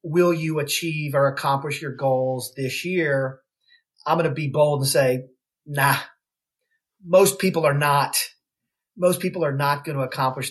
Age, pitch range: 40-59, 140-185 Hz